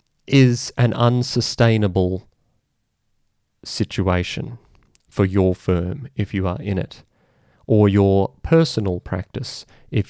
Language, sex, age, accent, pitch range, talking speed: English, male, 30-49, Australian, 95-125 Hz, 100 wpm